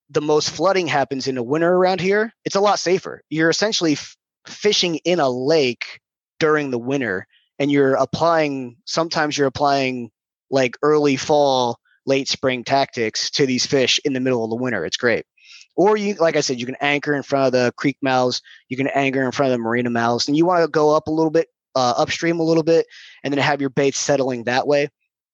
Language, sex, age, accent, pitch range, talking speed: English, male, 20-39, American, 130-160 Hz, 215 wpm